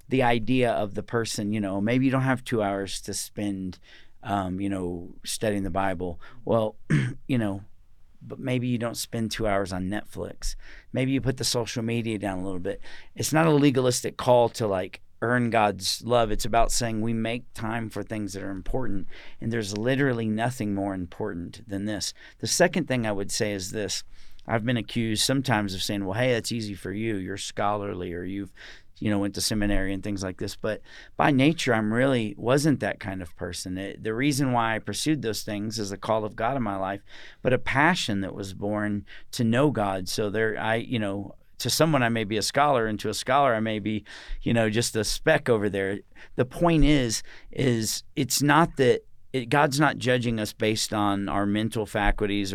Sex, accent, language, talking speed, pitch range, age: male, American, English, 205 wpm, 100-120 Hz, 40-59